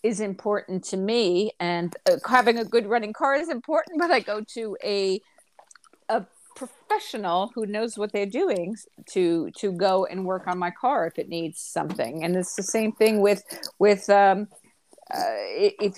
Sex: female